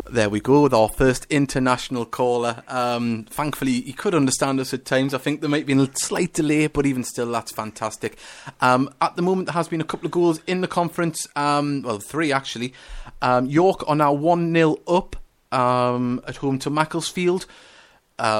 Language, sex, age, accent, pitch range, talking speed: English, male, 30-49, British, 130-170 Hz, 190 wpm